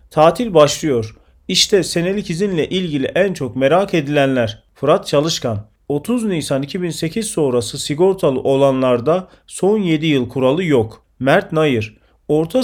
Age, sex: 40-59, male